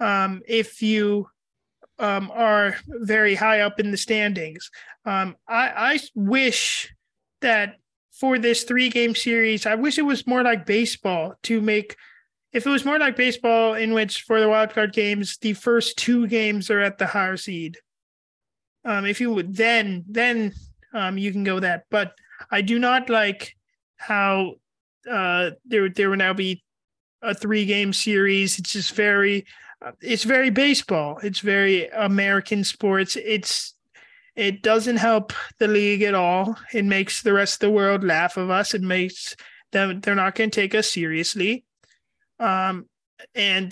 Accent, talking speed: American, 165 wpm